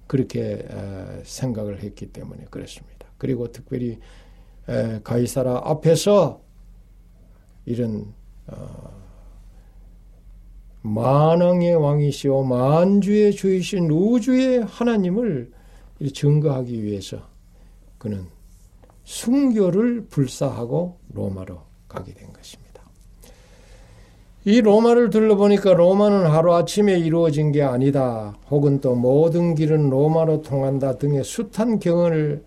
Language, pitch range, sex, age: Korean, 105-170 Hz, male, 60-79